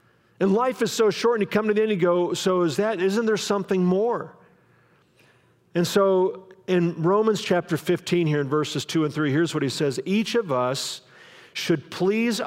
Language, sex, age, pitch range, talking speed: English, male, 50-69, 150-190 Hz, 195 wpm